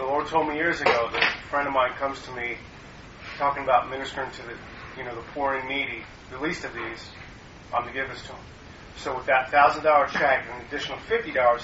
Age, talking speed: 30-49, 240 wpm